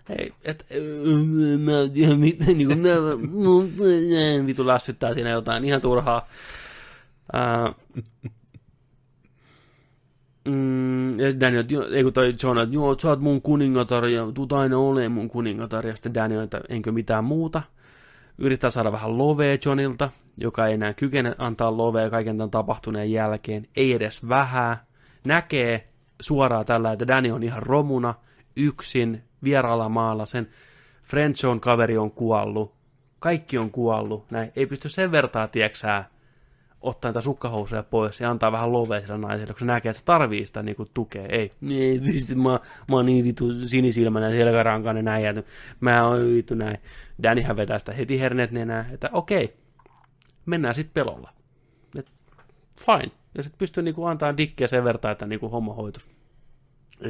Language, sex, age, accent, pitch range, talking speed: Finnish, male, 20-39, native, 115-140 Hz, 135 wpm